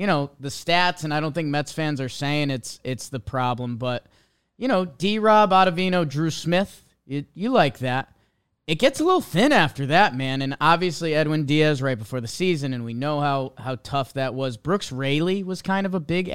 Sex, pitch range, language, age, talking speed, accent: male, 125-180 Hz, English, 20-39, 215 wpm, American